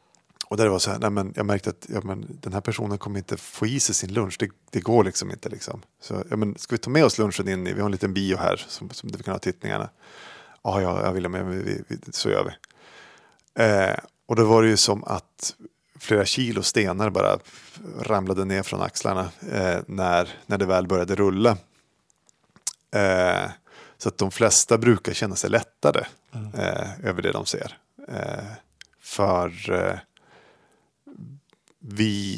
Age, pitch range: 30-49, 100-115 Hz